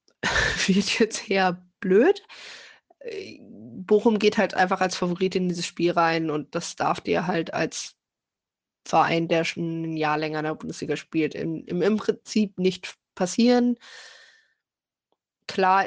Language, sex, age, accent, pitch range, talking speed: German, female, 20-39, German, 175-205 Hz, 135 wpm